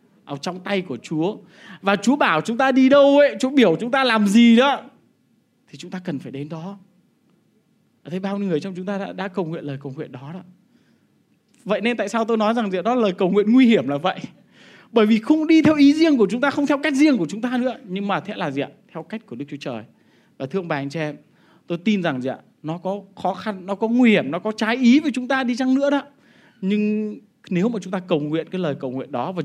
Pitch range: 165-235 Hz